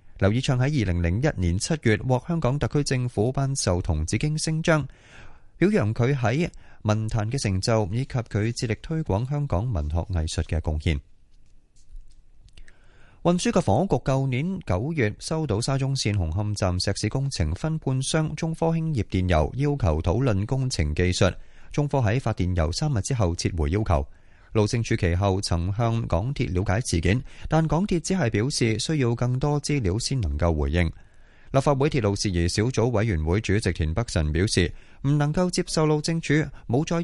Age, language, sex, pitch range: 20-39, Chinese, male, 90-140 Hz